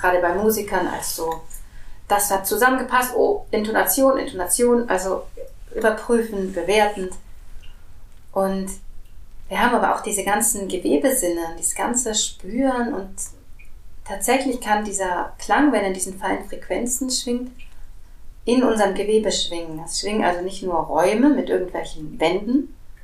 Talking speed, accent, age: 130 wpm, German, 30-49